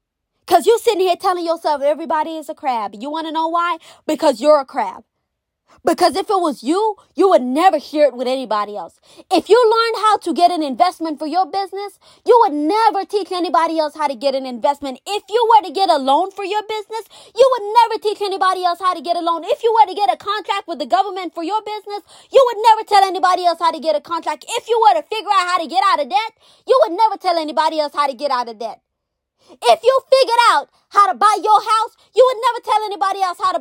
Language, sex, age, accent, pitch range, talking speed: English, female, 20-39, American, 315-425 Hz, 250 wpm